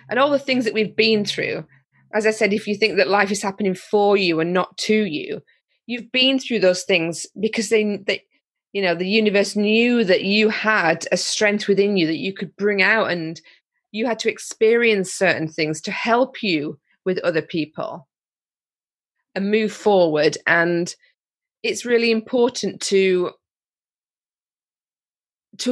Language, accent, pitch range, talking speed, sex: English, British, 185-230 Hz, 165 wpm, female